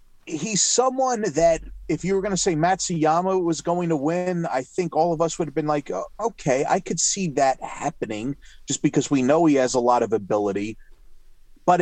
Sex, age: male, 30-49